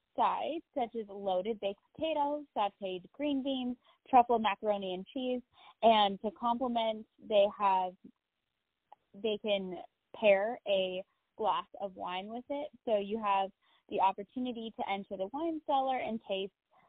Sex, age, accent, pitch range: female, 20-39, American, 185-235 Hz